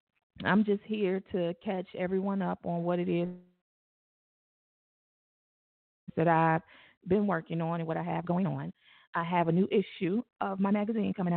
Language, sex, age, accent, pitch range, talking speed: English, female, 20-39, American, 155-185 Hz, 165 wpm